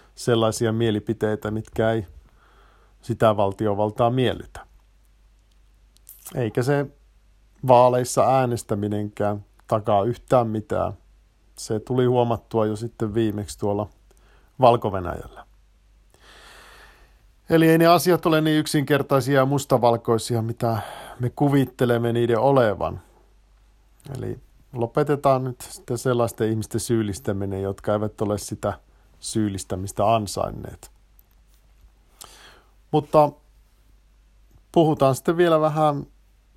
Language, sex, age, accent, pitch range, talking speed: Finnish, male, 50-69, native, 105-130 Hz, 90 wpm